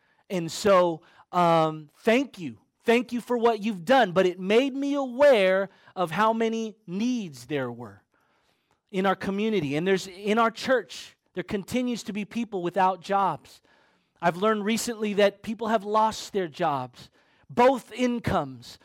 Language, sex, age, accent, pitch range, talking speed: English, male, 30-49, American, 180-230 Hz, 155 wpm